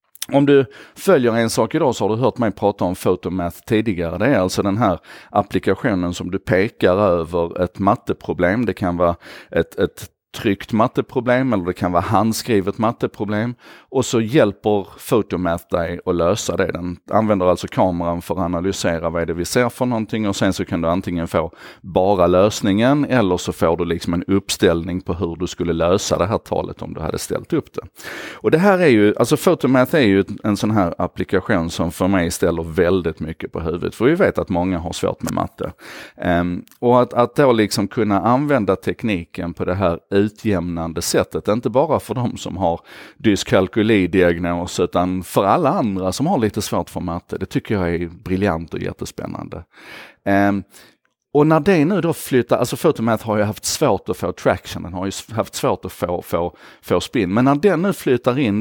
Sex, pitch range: male, 90-115 Hz